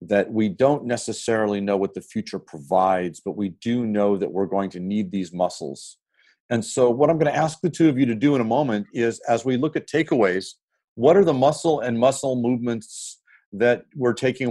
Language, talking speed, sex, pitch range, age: English, 215 wpm, male, 105-135 Hz, 40-59